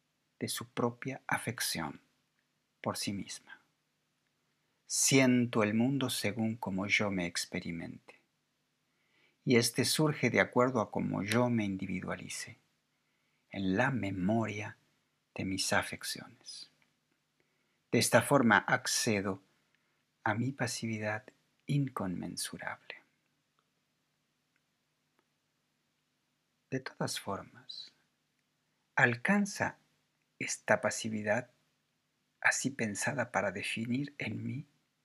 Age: 50-69